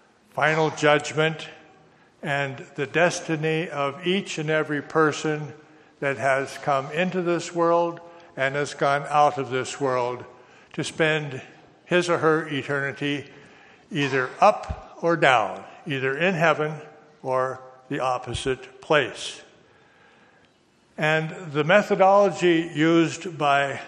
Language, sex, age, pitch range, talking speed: English, male, 60-79, 140-165 Hz, 115 wpm